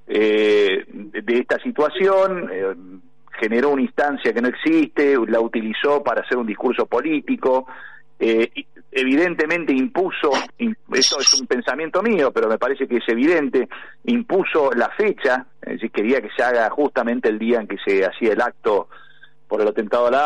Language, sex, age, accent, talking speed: Spanish, male, 50-69, Argentinian, 165 wpm